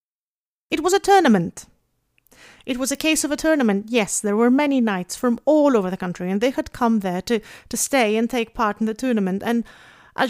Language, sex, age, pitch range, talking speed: English, female, 30-49, 205-260 Hz, 215 wpm